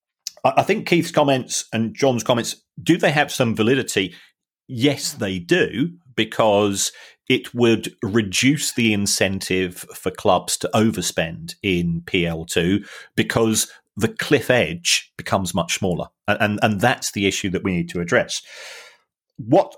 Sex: male